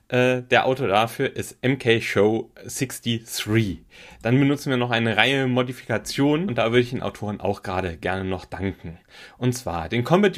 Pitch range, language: 110-145 Hz, German